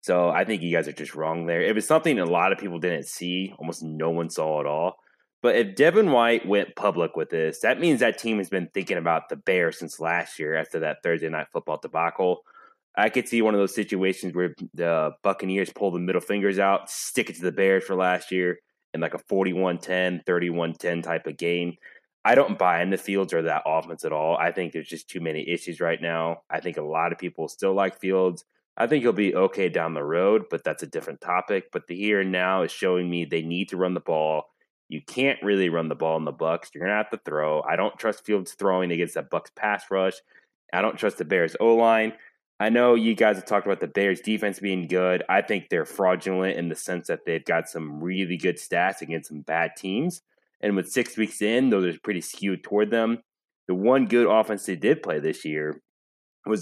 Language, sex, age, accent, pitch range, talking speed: English, male, 20-39, American, 85-105 Hz, 235 wpm